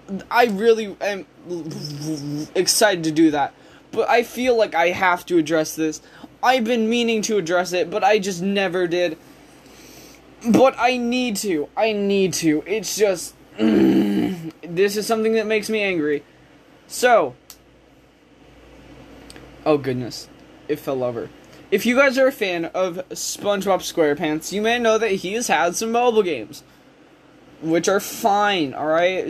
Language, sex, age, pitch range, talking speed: English, male, 20-39, 170-230 Hz, 145 wpm